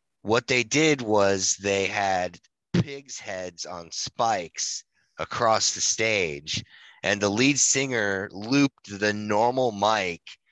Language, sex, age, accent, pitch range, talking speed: English, male, 20-39, American, 95-110 Hz, 120 wpm